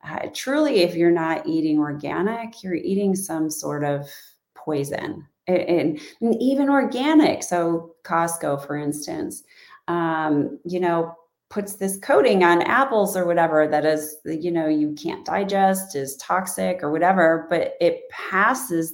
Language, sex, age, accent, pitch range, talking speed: English, female, 30-49, American, 160-210 Hz, 145 wpm